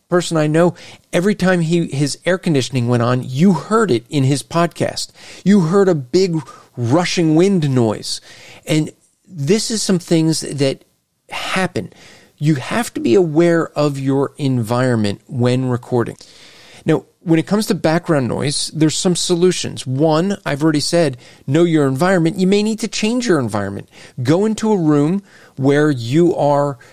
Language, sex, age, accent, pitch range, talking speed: English, male, 40-59, American, 140-180 Hz, 160 wpm